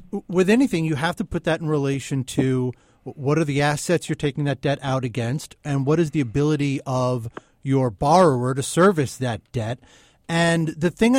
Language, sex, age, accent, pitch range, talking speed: English, male, 30-49, American, 135-180 Hz, 190 wpm